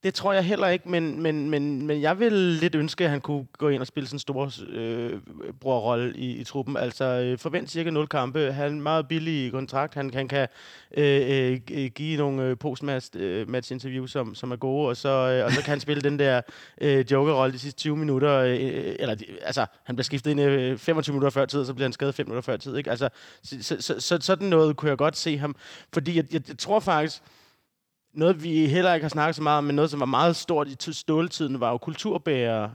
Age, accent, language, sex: 30-49, native, Danish, male